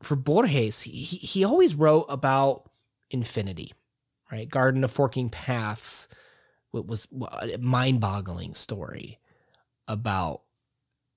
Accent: American